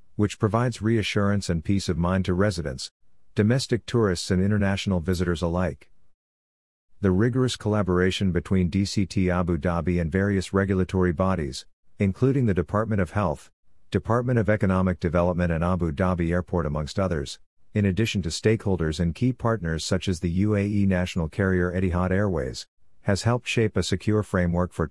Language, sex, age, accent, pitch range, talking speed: English, male, 50-69, American, 85-105 Hz, 150 wpm